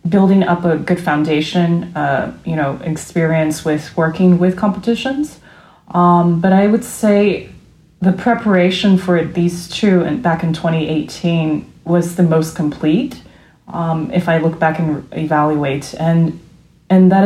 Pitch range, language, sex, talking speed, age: 160-190 Hz, English, female, 145 wpm, 30-49